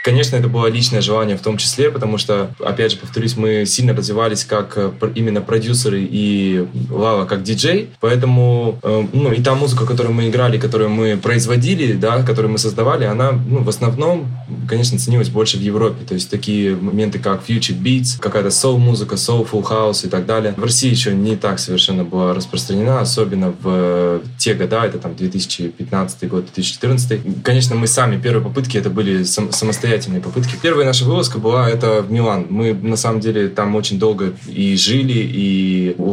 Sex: male